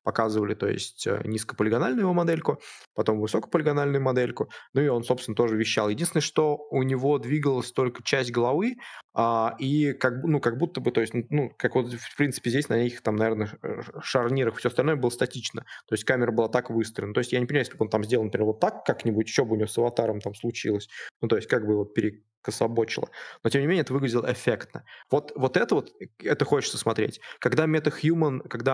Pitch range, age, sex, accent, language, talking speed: 110-130 Hz, 20-39, male, native, Russian, 205 wpm